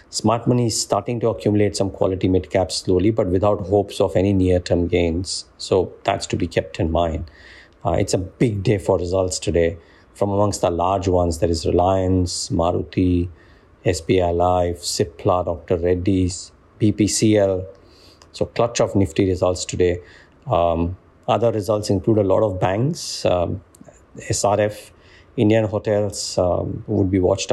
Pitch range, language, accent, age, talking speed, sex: 90-105 Hz, English, Indian, 50-69, 150 wpm, male